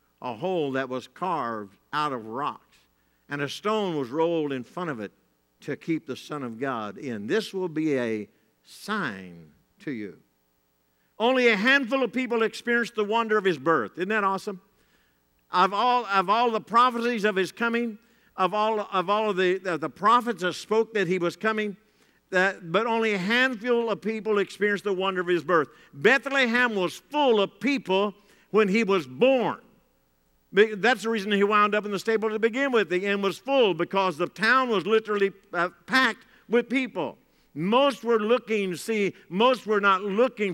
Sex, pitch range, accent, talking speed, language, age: male, 175-225 Hz, American, 180 wpm, English, 50-69